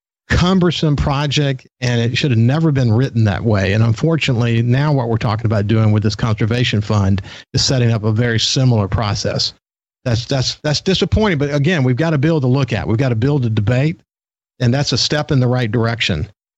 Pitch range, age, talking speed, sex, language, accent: 115-150 Hz, 50-69, 205 wpm, male, English, American